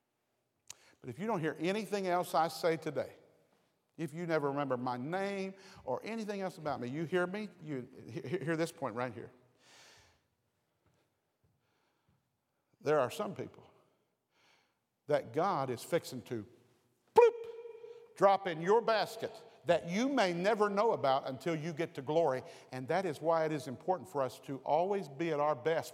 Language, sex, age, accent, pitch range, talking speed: English, male, 50-69, American, 155-215 Hz, 160 wpm